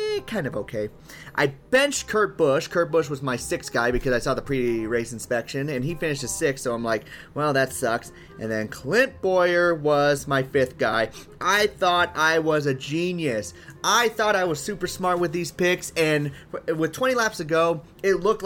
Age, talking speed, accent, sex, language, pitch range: 30-49, 200 wpm, American, male, English, 125-170 Hz